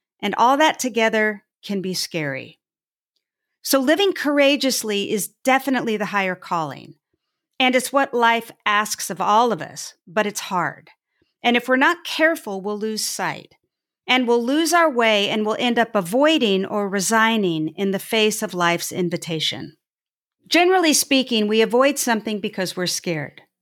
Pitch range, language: 190-255 Hz, English